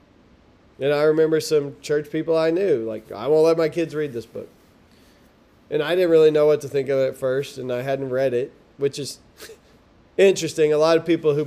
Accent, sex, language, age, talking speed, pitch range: American, male, English, 20-39, 220 wpm, 150-195 Hz